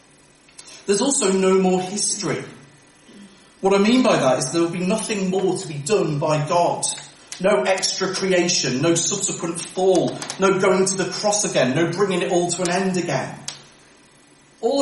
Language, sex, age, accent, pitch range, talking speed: English, male, 40-59, British, 155-205 Hz, 170 wpm